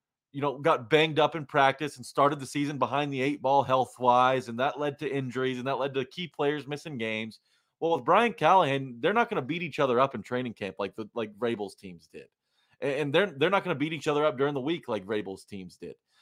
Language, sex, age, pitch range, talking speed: English, male, 30-49, 125-175 Hz, 240 wpm